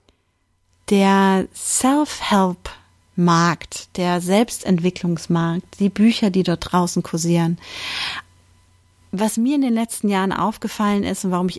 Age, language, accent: 40-59, German, German